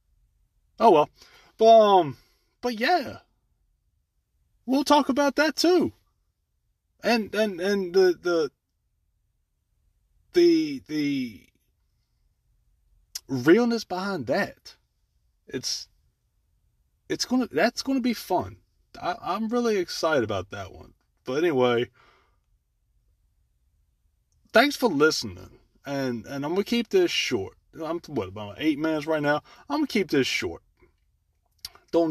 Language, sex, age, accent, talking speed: English, male, 30-49, American, 110 wpm